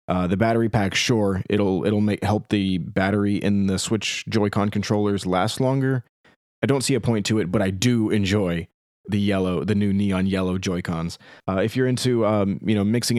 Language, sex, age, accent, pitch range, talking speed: English, male, 30-49, American, 95-120 Hz, 200 wpm